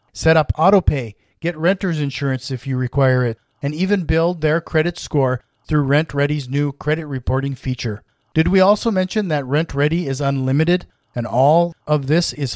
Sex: male